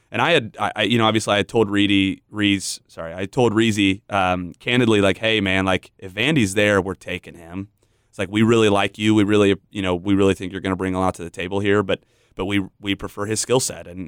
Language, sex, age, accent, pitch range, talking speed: English, male, 30-49, American, 100-115 Hz, 255 wpm